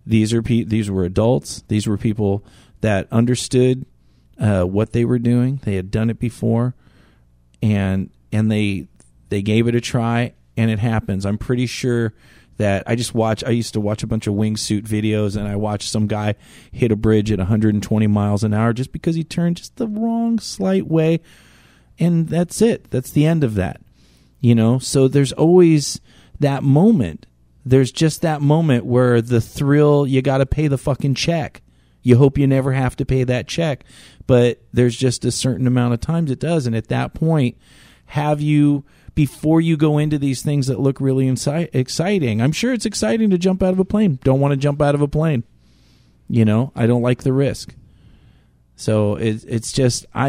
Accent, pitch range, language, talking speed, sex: American, 110-145 Hz, English, 190 wpm, male